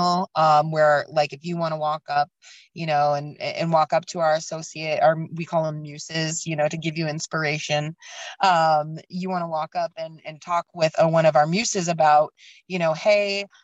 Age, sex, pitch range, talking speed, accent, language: 30-49, female, 155-190 Hz, 210 wpm, American, English